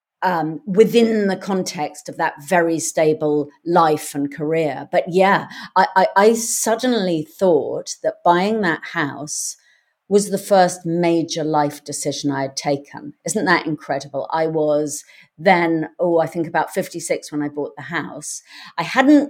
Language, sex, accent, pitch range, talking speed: English, female, British, 160-200 Hz, 150 wpm